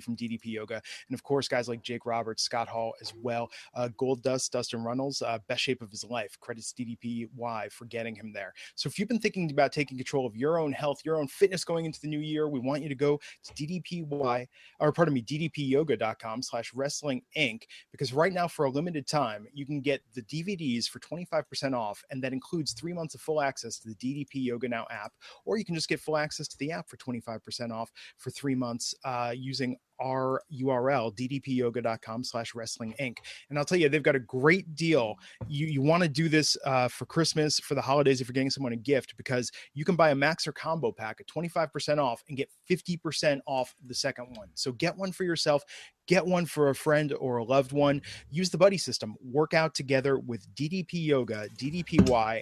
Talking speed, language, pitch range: 220 wpm, English, 120-155 Hz